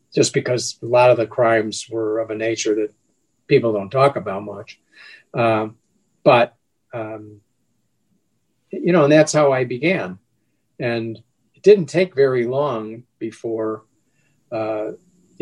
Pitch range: 110-145 Hz